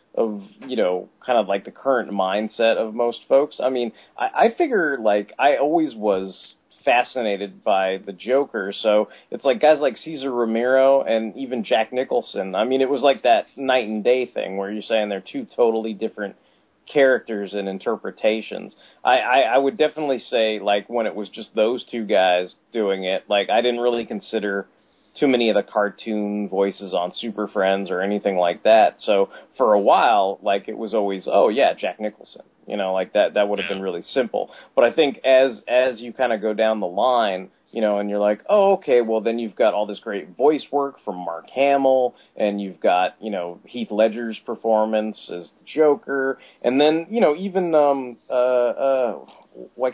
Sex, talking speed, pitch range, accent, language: male, 195 wpm, 105-130 Hz, American, English